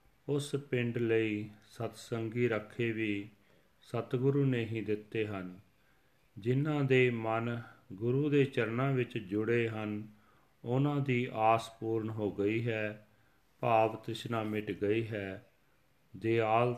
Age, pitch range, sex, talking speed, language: 40-59, 105-125 Hz, male, 120 wpm, Punjabi